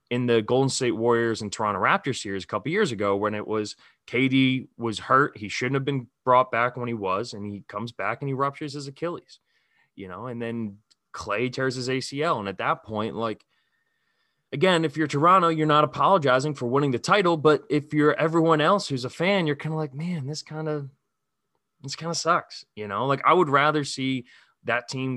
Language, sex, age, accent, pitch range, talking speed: English, male, 20-39, American, 110-150 Hz, 205 wpm